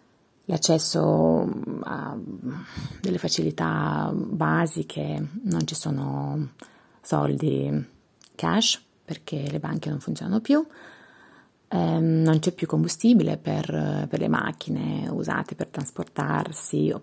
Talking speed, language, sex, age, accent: 100 wpm, Italian, female, 30-49, native